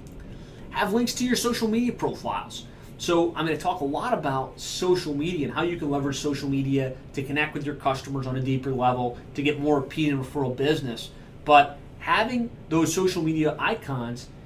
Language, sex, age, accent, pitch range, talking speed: English, male, 30-49, American, 130-160 Hz, 185 wpm